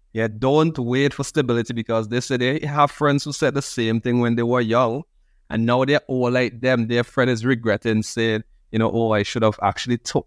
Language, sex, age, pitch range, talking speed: English, male, 20-39, 110-130 Hz, 230 wpm